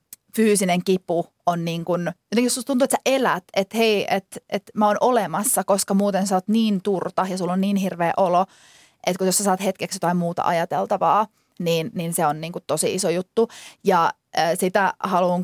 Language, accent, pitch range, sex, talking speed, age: Finnish, native, 180-225 Hz, female, 195 wpm, 30-49